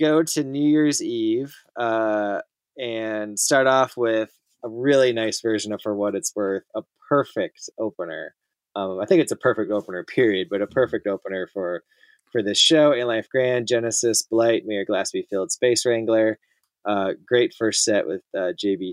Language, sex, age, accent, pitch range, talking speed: English, male, 20-39, American, 100-130 Hz, 175 wpm